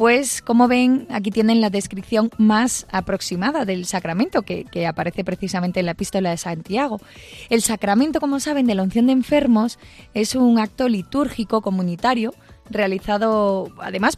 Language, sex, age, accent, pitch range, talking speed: Spanish, female, 20-39, Spanish, 195-255 Hz, 150 wpm